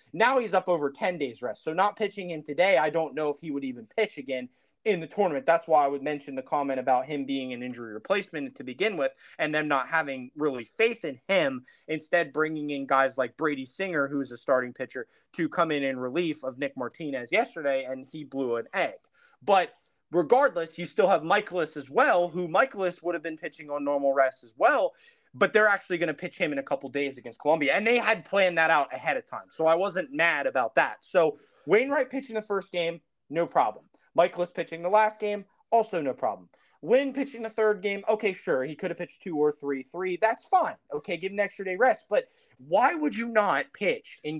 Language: English